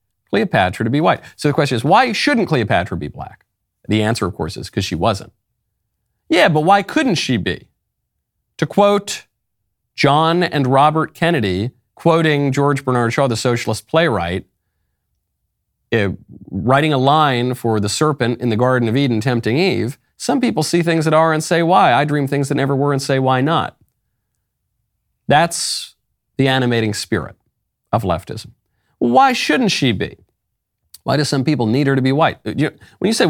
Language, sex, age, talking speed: English, male, 40-59, 170 wpm